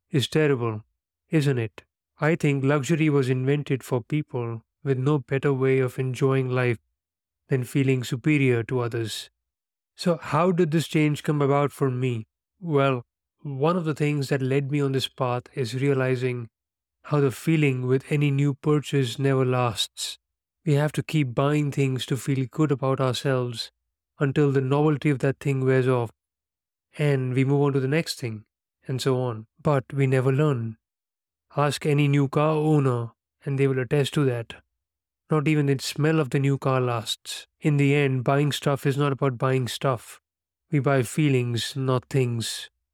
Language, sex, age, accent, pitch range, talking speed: English, male, 30-49, Indian, 125-145 Hz, 170 wpm